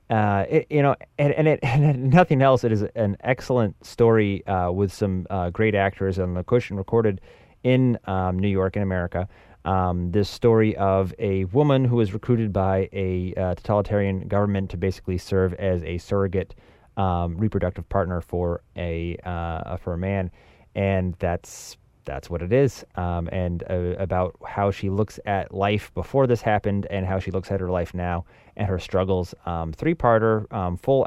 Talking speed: 180 wpm